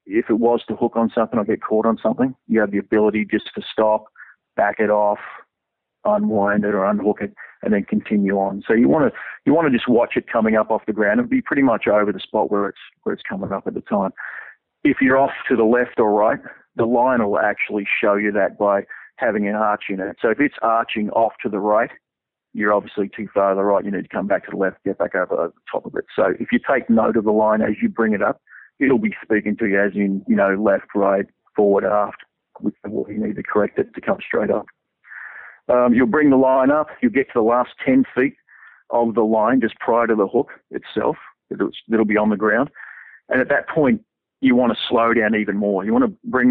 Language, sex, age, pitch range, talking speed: English, male, 40-59, 105-125 Hz, 250 wpm